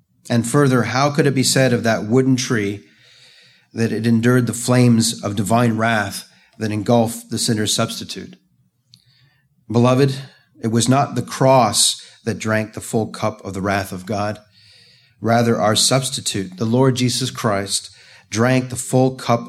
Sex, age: male, 40-59